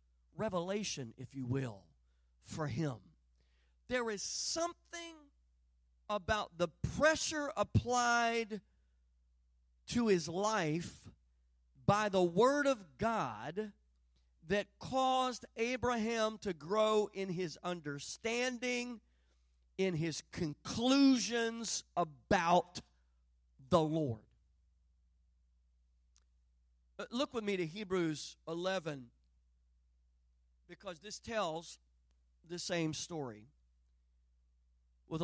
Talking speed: 80 wpm